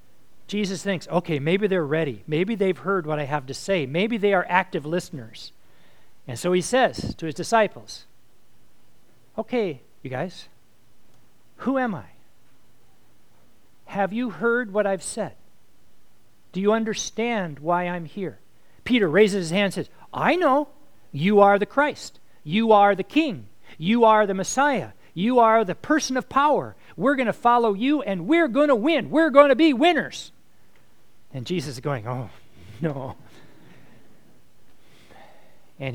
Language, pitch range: English, 140-210 Hz